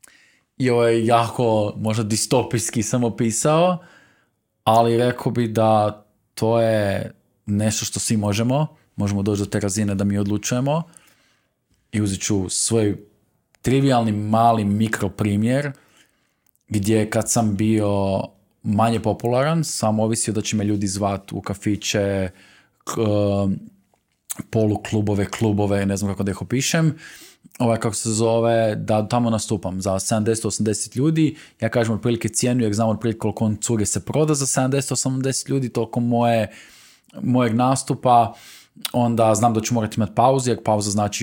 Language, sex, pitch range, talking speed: Croatian, male, 105-120 Hz, 135 wpm